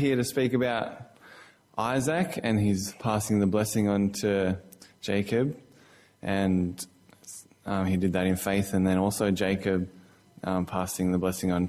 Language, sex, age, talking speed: English, male, 20-39, 150 wpm